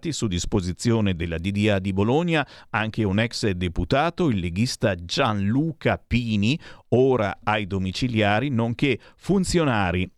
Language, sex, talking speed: Italian, male, 110 wpm